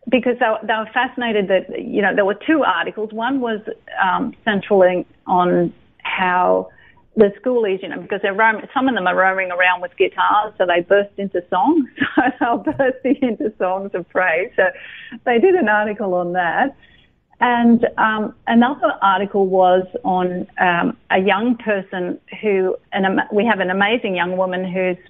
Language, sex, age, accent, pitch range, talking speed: English, female, 40-59, Australian, 185-250 Hz, 170 wpm